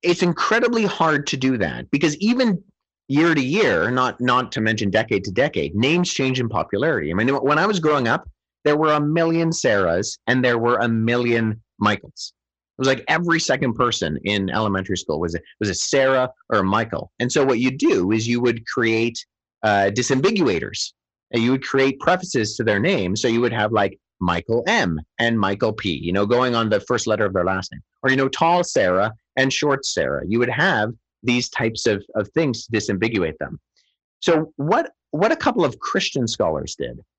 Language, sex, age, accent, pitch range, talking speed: English, male, 30-49, American, 100-140 Hz, 200 wpm